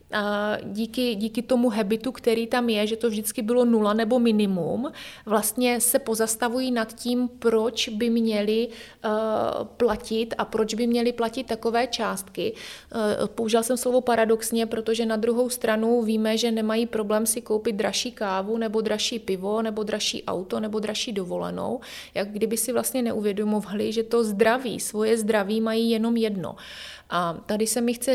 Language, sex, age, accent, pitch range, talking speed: Czech, female, 30-49, native, 215-235 Hz, 160 wpm